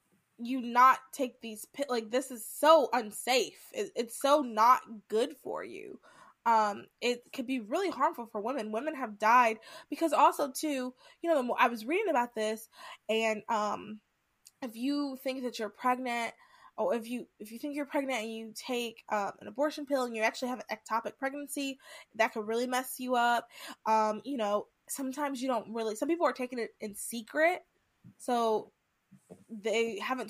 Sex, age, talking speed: female, 20-39, 175 wpm